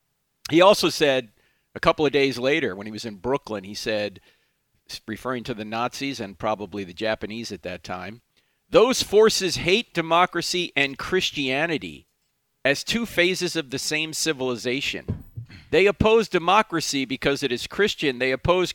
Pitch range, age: 130-185 Hz, 50-69